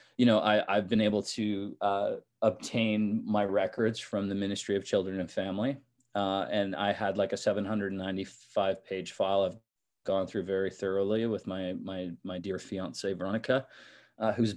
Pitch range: 95-115 Hz